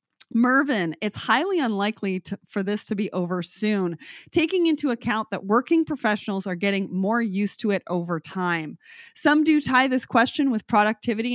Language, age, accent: English, 30-49, American